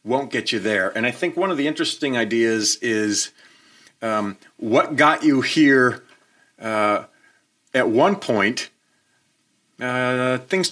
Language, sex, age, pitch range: English, male, 40-59, 105-135 Hz